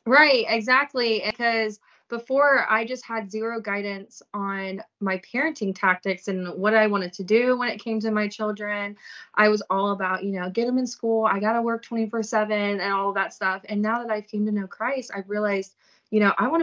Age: 20-39